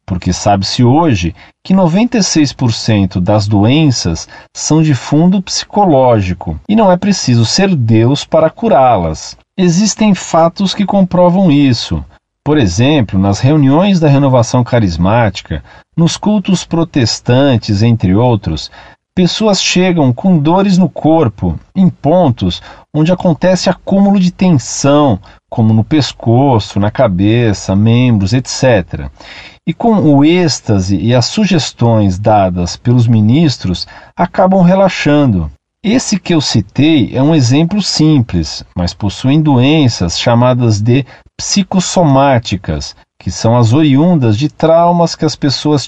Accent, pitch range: Brazilian, 110-175 Hz